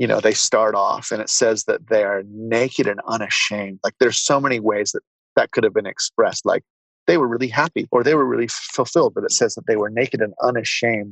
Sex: male